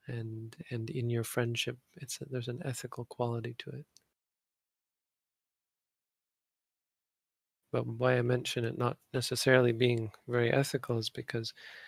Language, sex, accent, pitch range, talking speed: English, male, American, 115-125 Hz, 125 wpm